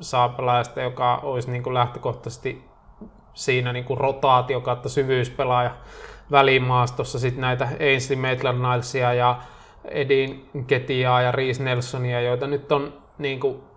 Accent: native